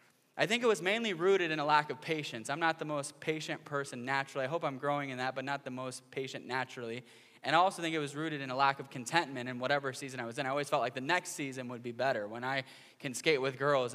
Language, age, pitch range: English, 10-29, 130-165 Hz